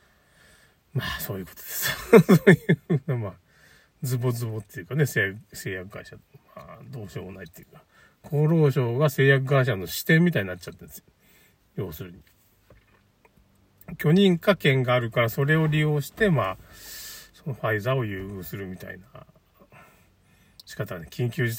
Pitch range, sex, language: 115-170 Hz, male, Japanese